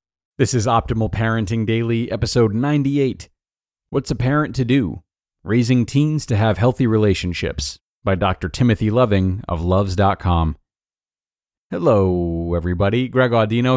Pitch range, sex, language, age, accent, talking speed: 95-120 Hz, male, English, 40-59, American, 120 wpm